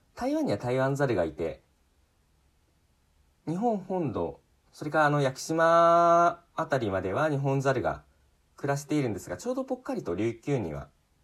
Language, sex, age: Japanese, male, 40-59